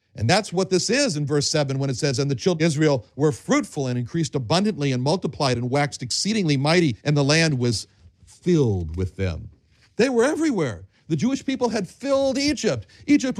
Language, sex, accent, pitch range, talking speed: English, male, American, 115-175 Hz, 195 wpm